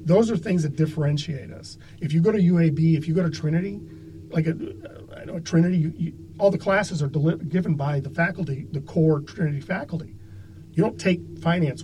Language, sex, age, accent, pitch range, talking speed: English, male, 40-59, American, 130-160 Hz, 210 wpm